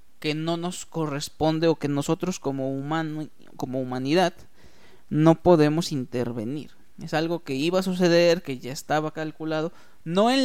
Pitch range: 145-200 Hz